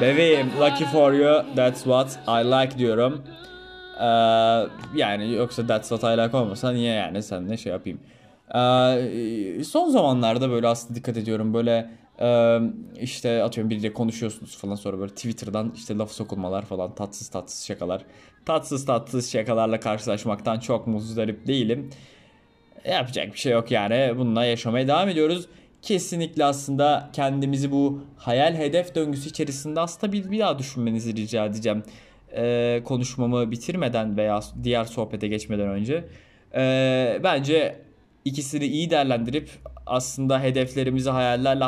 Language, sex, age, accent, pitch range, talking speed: Turkish, male, 20-39, native, 115-145 Hz, 135 wpm